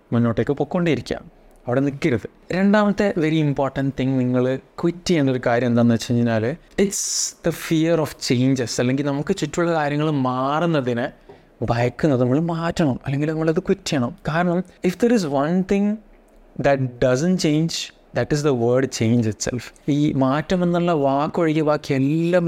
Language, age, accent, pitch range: Malayalam, 20-39, native, 130-165 Hz